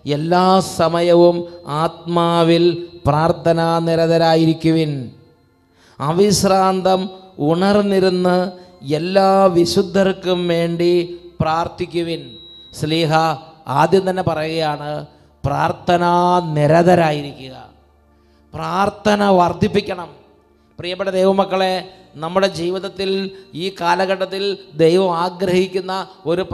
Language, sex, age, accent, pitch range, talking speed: English, male, 30-49, Indian, 160-185 Hz, 75 wpm